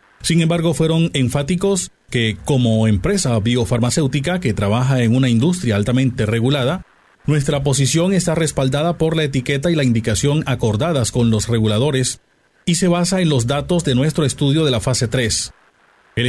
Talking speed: 160 wpm